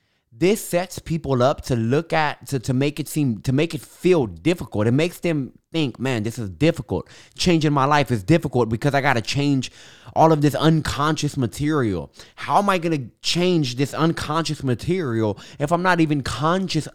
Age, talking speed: 20-39, 185 wpm